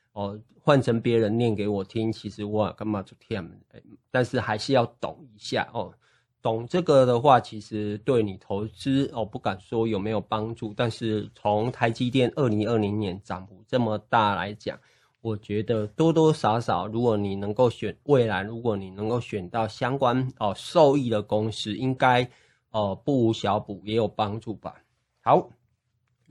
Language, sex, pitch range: Chinese, male, 105-125 Hz